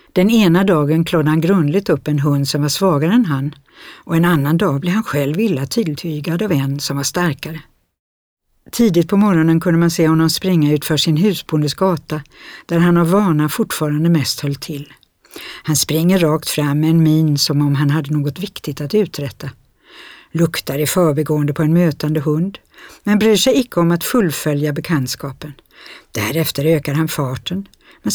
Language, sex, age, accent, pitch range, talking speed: Swedish, female, 60-79, native, 145-180 Hz, 175 wpm